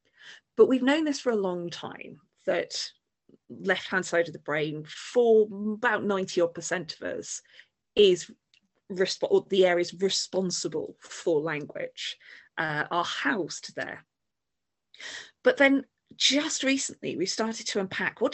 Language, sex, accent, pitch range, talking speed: English, female, British, 165-215 Hz, 125 wpm